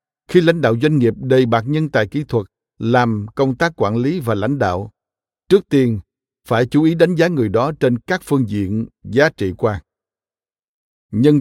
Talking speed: 190 wpm